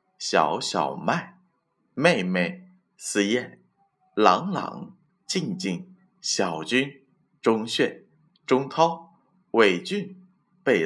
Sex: male